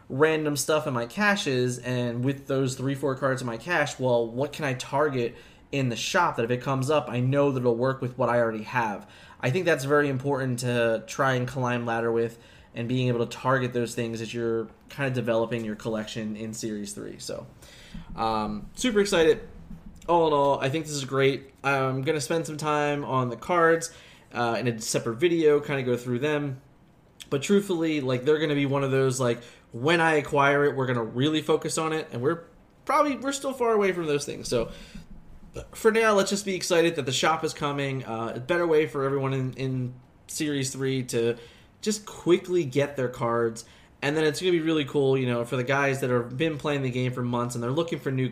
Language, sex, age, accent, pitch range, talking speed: English, male, 20-39, American, 120-150 Hz, 225 wpm